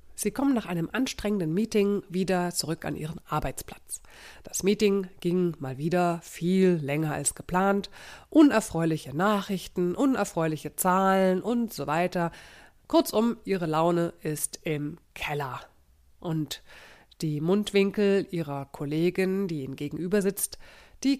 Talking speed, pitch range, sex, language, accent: 120 wpm, 155-200 Hz, female, German, German